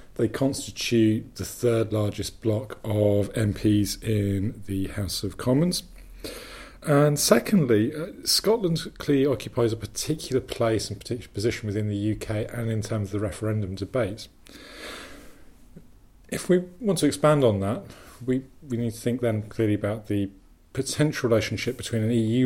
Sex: male